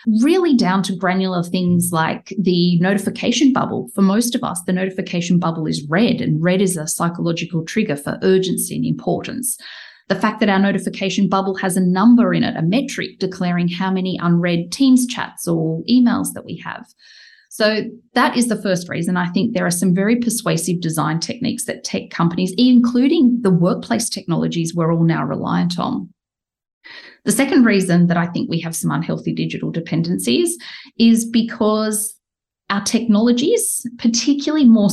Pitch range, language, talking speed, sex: 170-230 Hz, English, 165 wpm, female